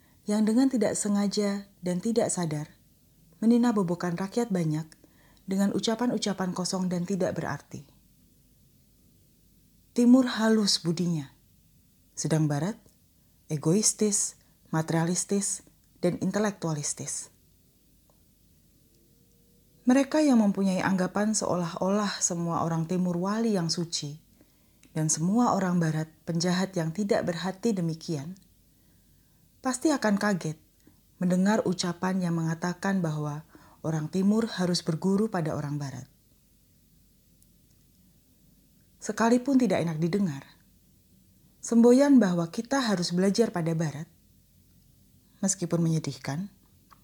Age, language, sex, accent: 30-49, Indonesian, female, native